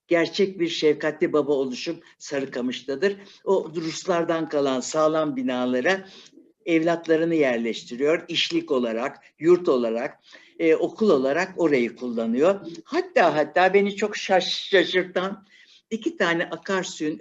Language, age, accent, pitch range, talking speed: Turkish, 60-79, native, 145-195 Hz, 105 wpm